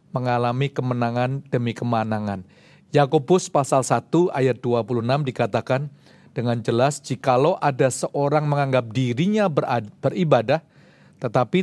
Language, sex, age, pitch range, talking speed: Indonesian, male, 40-59, 125-160 Hz, 100 wpm